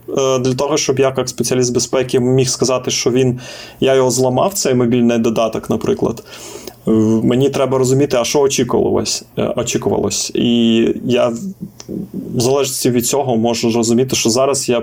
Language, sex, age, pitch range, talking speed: Ukrainian, male, 20-39, 115-130 Hz, 140 wpm